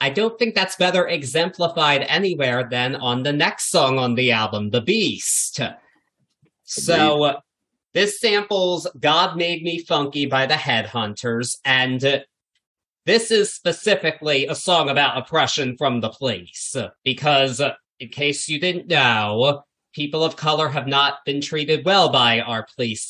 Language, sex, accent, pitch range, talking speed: English, male, American, 125-155 Hz, 145 wpm